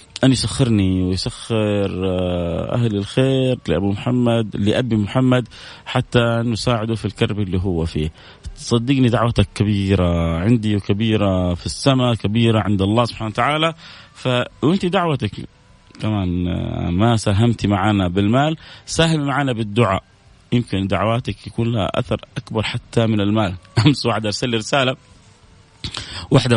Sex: male